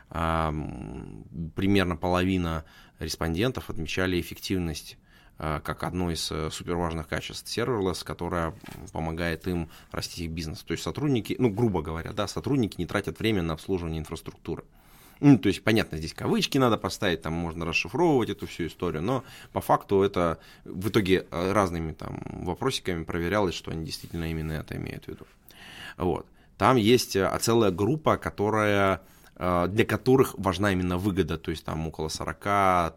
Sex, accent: male, native